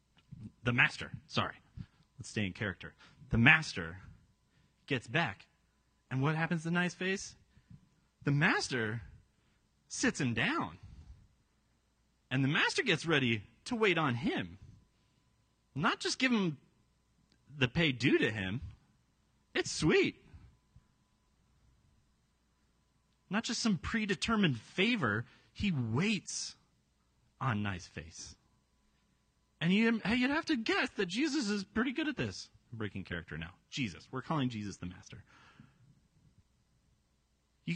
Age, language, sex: 30-49, English, male